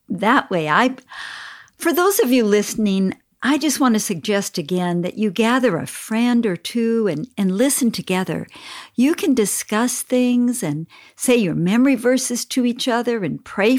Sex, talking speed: female, 170 wpm